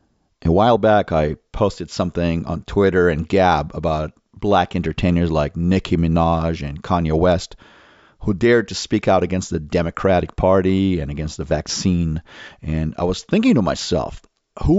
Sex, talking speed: male, 160 wpm